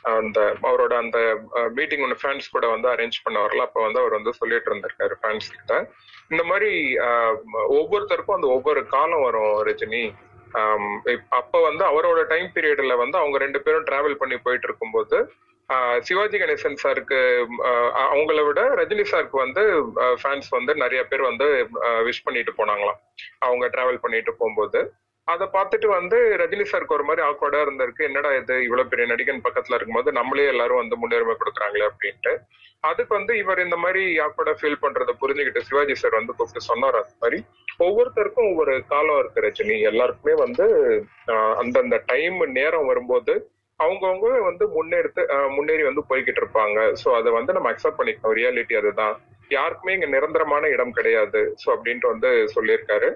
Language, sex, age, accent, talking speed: Tamil, male, 30-49, native, 150 wpm